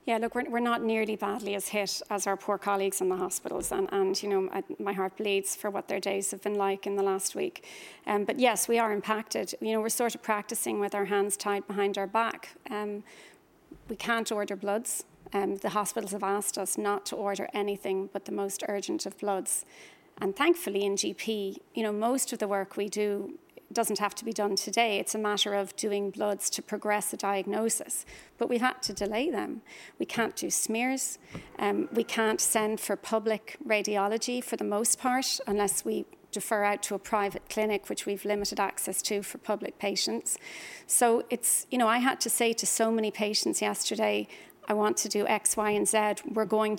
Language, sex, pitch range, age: English, female, 200-230 Hz, 40-59